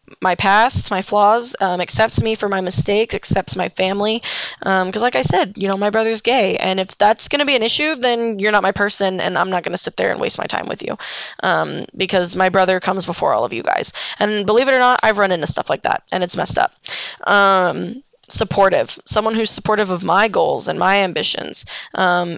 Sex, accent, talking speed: female, American, 230 wpm